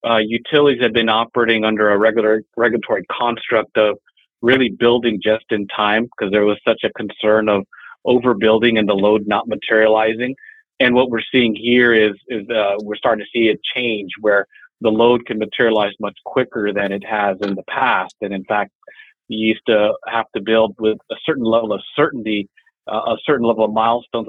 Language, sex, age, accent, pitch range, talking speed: English, male, 40-59, American, 110-120 Hz, 190 wpm